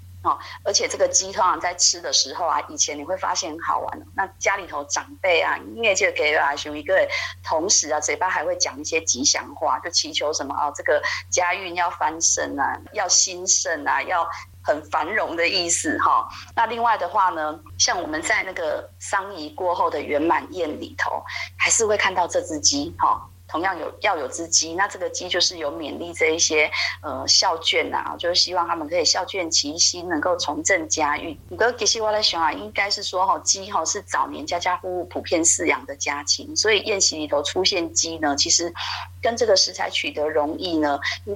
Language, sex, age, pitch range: Chinese, female, 30-49, 150-220 Hz